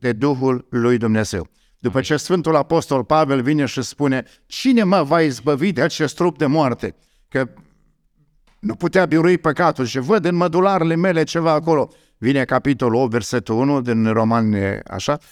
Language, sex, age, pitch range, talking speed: Romanian, male, 50-69, 130-165 Hz, 160 wpm